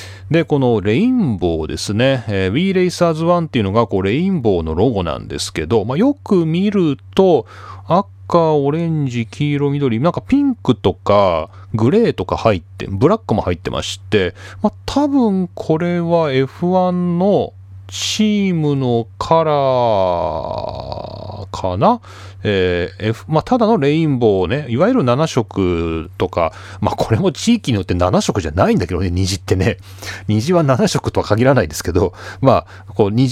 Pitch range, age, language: 95-145 Hz, 40-59, Japanese